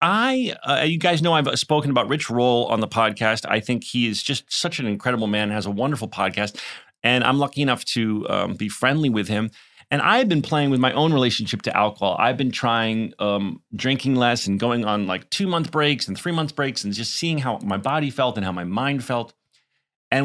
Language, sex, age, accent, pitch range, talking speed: English, male, 30-49, American, 110-150 Hz, 225 wpm